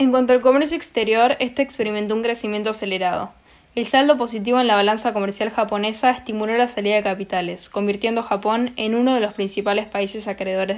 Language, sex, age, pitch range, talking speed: Spanish, female, 10-29, 195-235 Hz, 185 wpm